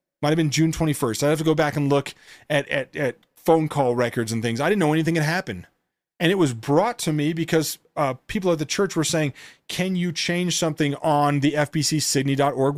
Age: 30-49